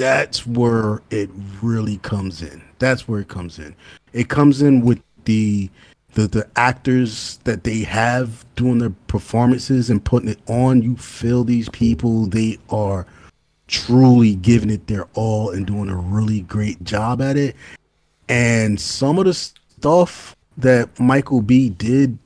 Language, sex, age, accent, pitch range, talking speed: English, male, 30-49, American, 105-140 Hz, 155 wpm